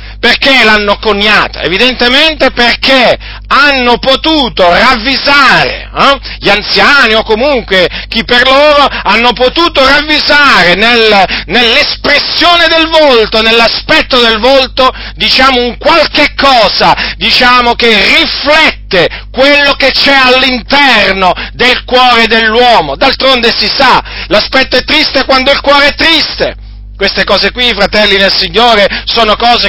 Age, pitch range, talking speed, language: 40-59, 215-275 Hz, 120 wpm, Italian